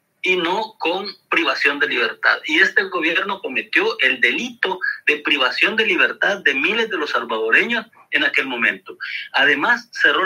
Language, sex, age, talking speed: Spanish, male, 40-59, 150 wpm